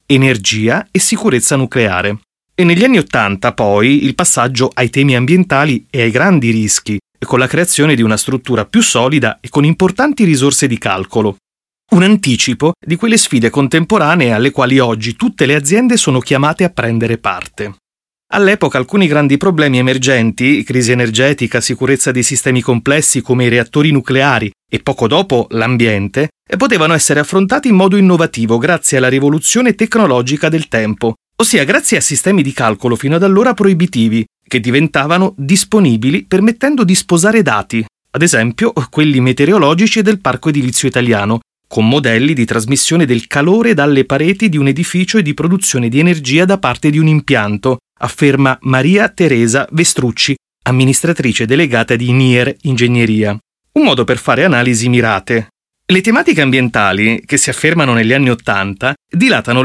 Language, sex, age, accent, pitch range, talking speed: Italian, male, 30-49, native, 120-170 Hz, 155 wpm